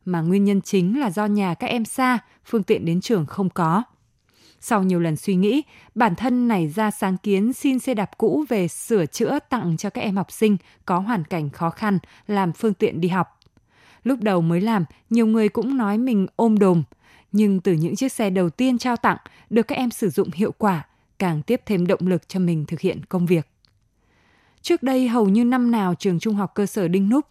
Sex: female